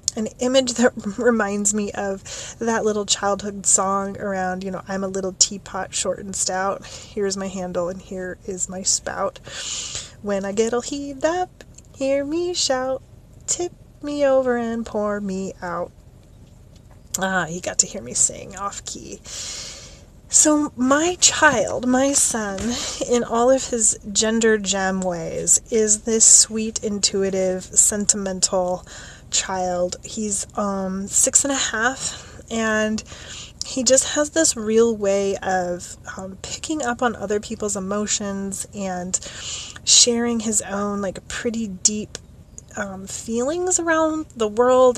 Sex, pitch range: female, 190-240 Hz